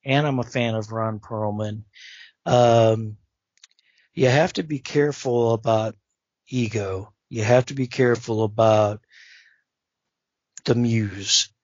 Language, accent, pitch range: English, American, 110-125 Hz